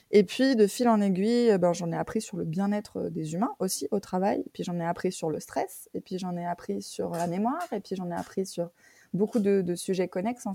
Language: French